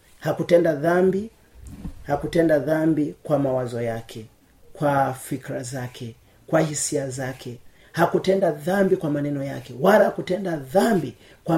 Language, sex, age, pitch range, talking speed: Swahili, male, 40-59, 125-175 Hz, 115 wpm